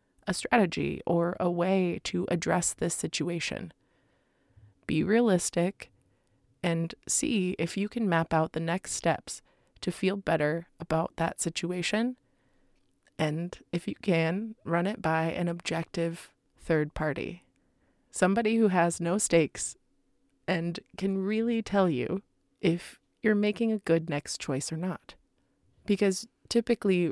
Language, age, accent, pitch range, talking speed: English, 20-39, American, 165-200 Hz, 130 wpm